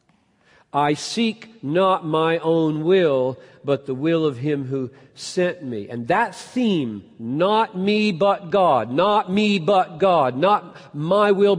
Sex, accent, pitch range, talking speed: male, American, 135-195 Hz, 145 wpm